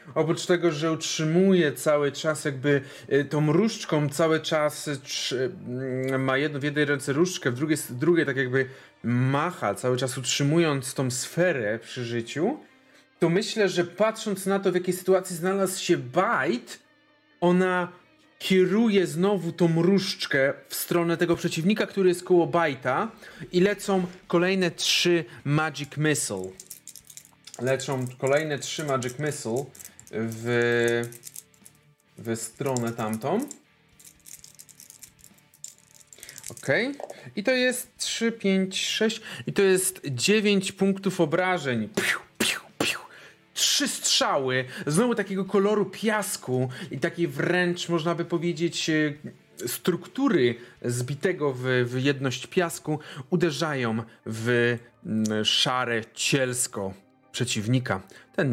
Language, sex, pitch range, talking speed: Polish, male, 130-185 Hz, 115 wpm